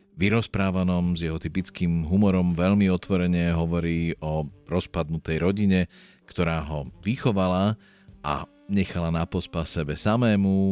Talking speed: 110 wpm